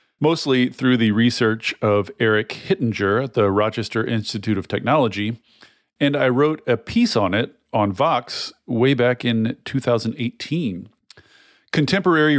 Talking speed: 130 wpm